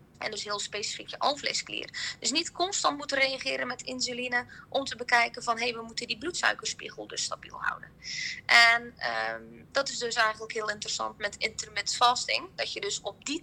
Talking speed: 175 wpm